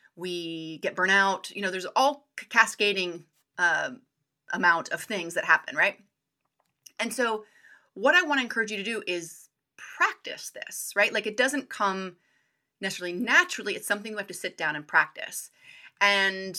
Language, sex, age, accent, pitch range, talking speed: English, female, 30-49, American, 175-235 Hz, 165 wpm